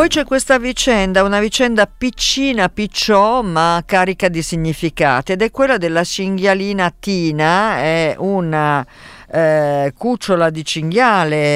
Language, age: Italian, 50-69